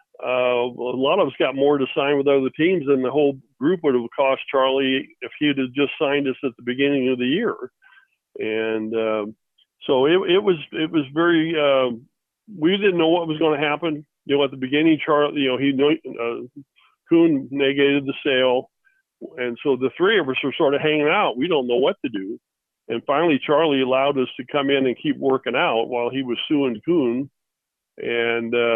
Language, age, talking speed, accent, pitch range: English, 50-69, 205 wpm, American, 125-150 Hz